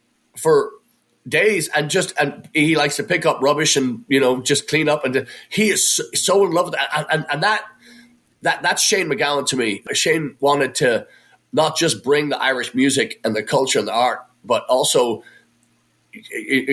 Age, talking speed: 30-49, 195 wpm